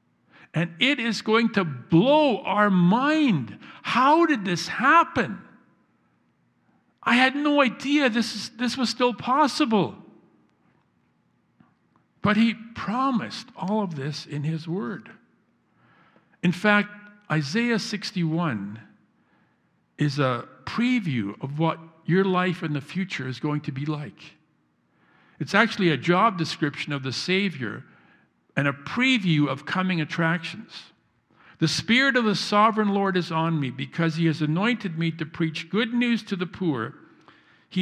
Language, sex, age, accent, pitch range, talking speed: English, male, 60-79, American, 160-215 Hz, 135 wpm